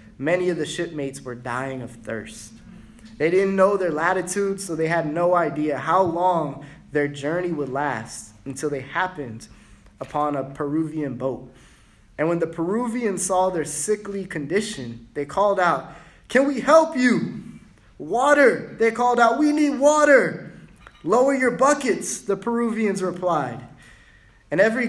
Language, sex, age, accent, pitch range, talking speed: English, male, 20-39, American, 140-210 Hz, 145 wpm